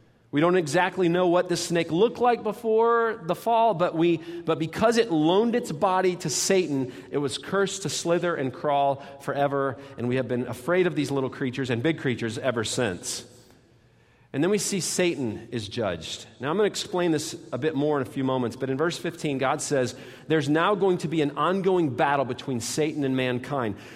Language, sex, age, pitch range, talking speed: English, male, 40-59, 135-200 Hz, 205 wpm